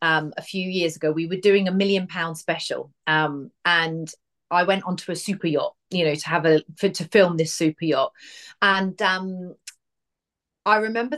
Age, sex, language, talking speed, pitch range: 30-49, female, English, 190 wpm, 160-245 Hz